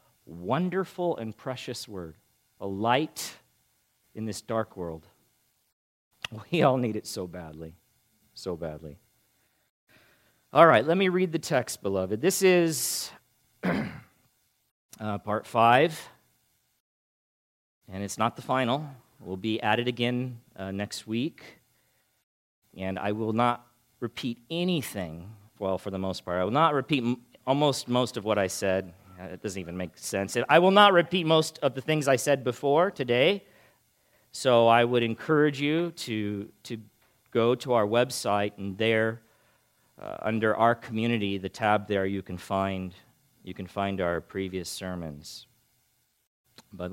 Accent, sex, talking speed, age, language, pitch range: American, male, 145 wpm, 40-59, English, 95-130 Hz